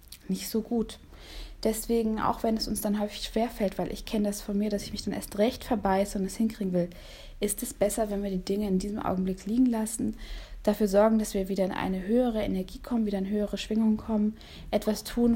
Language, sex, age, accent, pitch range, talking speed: German, female, 20-39, German, 195-235 Hz, 225 wpm